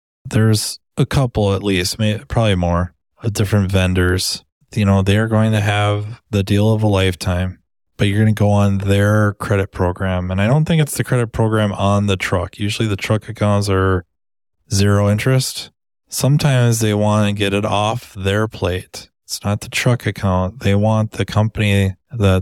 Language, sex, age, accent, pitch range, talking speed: English, male, 20-39, American, 95-120 Hz, 185 wpm